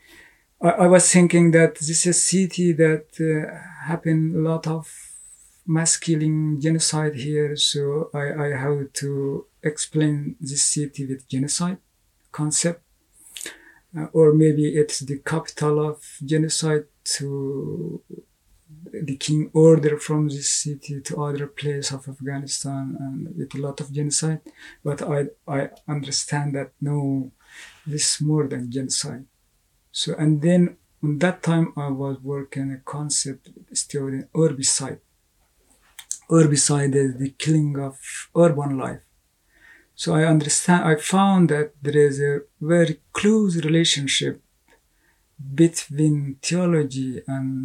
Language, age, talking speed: Swedish, 50-69, 125 wpm